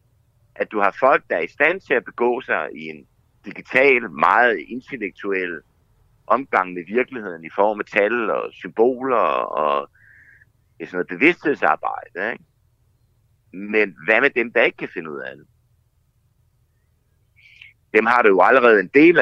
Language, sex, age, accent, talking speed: Danish, male, 60-79, native, 155 wpm